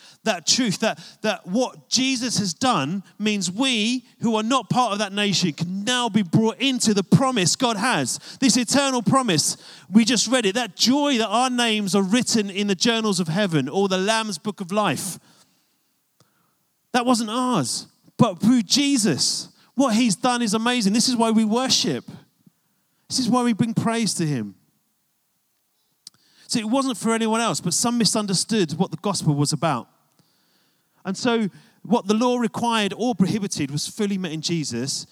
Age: 30-49